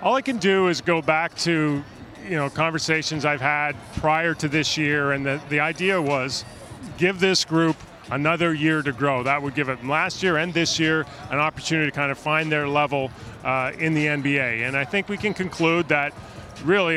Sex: male